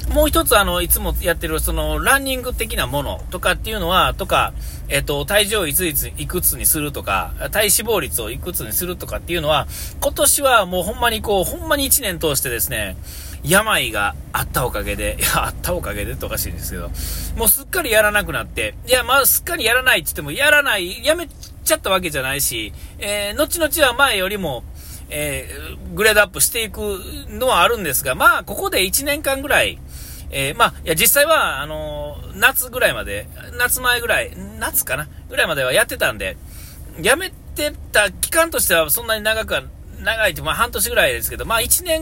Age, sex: 40-59, male